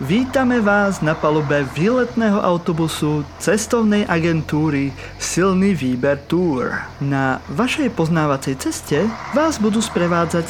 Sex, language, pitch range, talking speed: male, Slovak, 145-220 Hz, 105 wpm